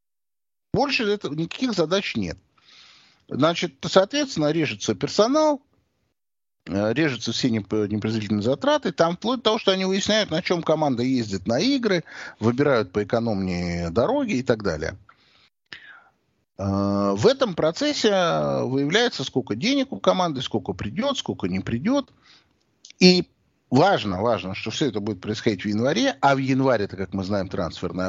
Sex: male